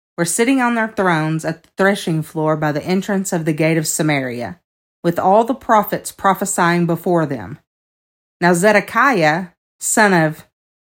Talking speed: 155 wpm